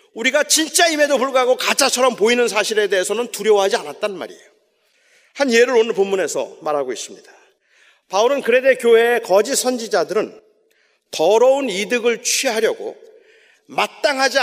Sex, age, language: male, 40-59, Korean